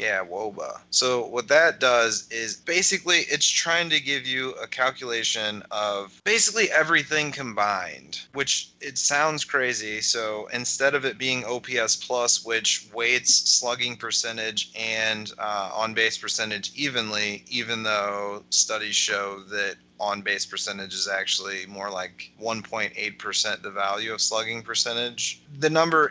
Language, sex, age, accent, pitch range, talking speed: English, male, 20-39, American, 100-125 Hz, 135 wpm